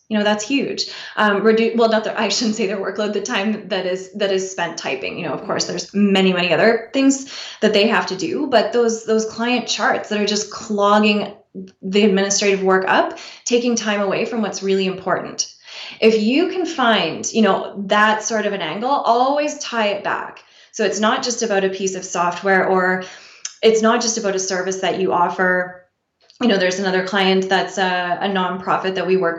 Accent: American